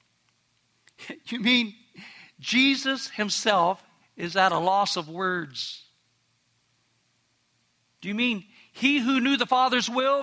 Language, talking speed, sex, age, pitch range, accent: English, 110 wpm, male, 60-79, 200-270 Hz, American